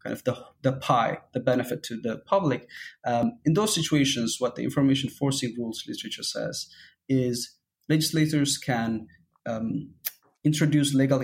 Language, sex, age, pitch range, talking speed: English, male, 20-39, 120-150 Hz, 140 wpm